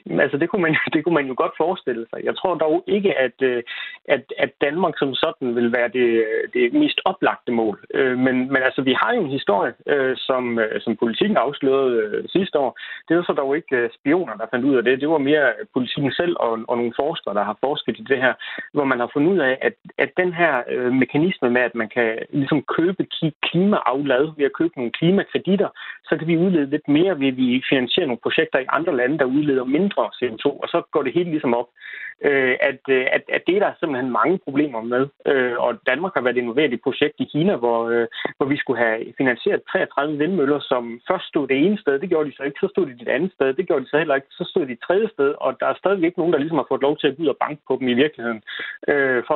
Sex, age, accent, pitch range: male, 30-49, native, 125-170 Hz